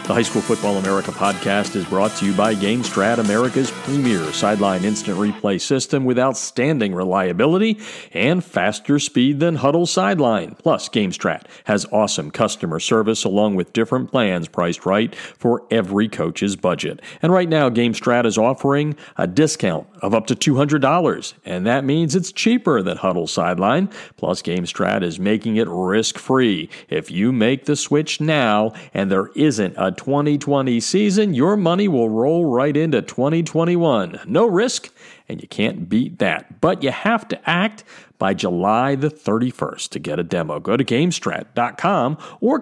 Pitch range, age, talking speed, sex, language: 105-160 Hz, 50-69, 160 wpm, male, English